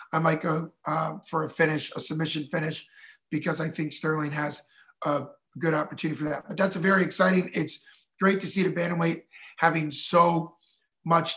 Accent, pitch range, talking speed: American, 160-190 Hz, 180 wpm